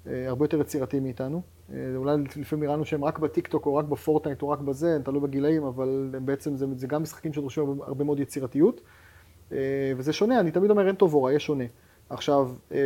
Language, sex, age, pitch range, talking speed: Hebrew, male, 30-49, 135-165 Hz, 190 wpm